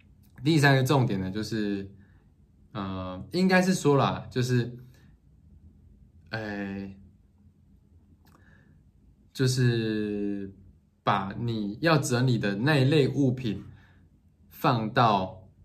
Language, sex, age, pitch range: Chinese, male, 20-39, 100-125 Hz